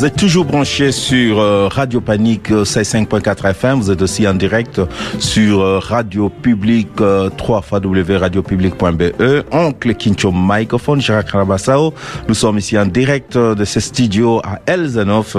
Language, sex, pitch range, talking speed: French, male, 95-120 Hz, 150 wpm